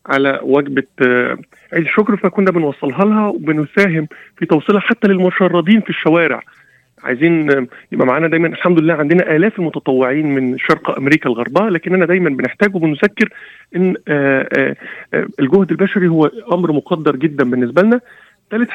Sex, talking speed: male, 130 wpm